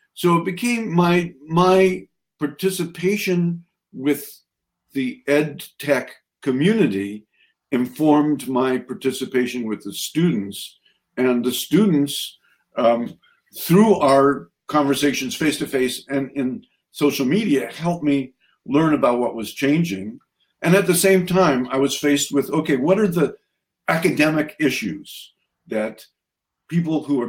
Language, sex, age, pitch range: English, male, 50-69, 125-170 Hz